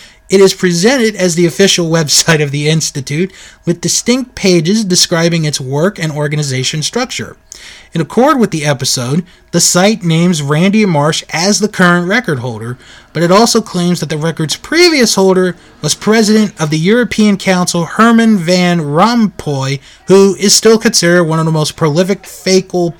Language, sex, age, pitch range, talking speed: English, male, 30-49, 155-200 Hz, 160 wpm